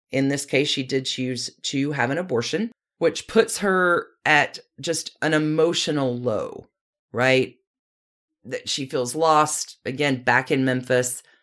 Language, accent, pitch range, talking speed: English, American, 135-215 Hz, 140 wpm